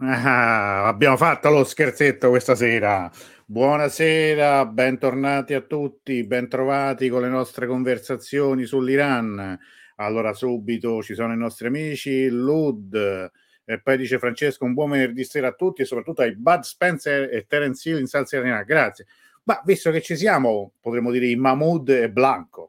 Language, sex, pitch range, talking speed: Italian, male, 115-145 Hz, 150 wpm